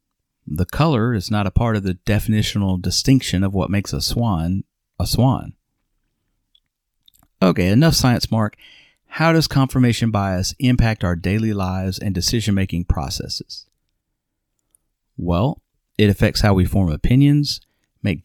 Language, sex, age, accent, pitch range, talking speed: English, male, 40-59, American, 95-125 Hz, 130 wpm